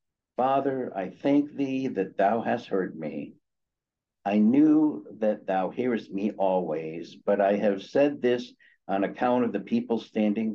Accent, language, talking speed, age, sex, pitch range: American, English, 155 wpm, 60-79, male, 95-120 Hz